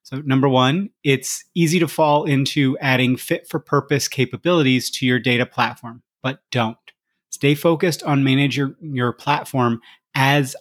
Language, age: English, 30-49